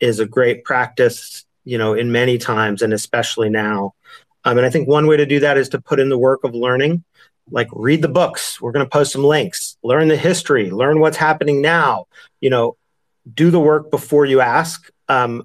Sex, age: male, 40-59